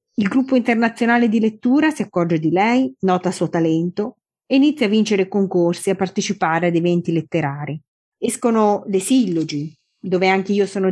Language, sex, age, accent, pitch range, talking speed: Italian, female, 30-49, native, 180-230 Hz, 165 wpm